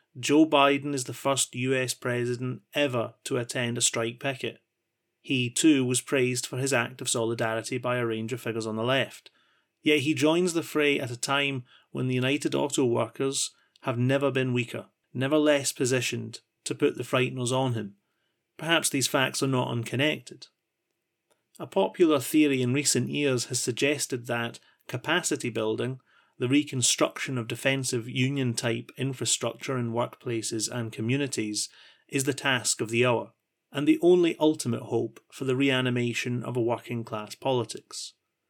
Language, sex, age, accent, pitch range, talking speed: English, male, 30-49, British, 120-140 Hz, 155 wpm